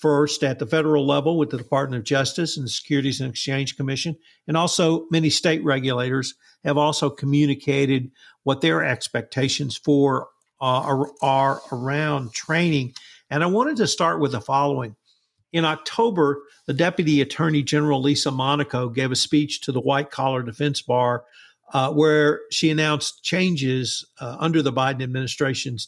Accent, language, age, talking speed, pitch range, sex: American, English, 50-69, 160 wpm, 135-155 Hz, male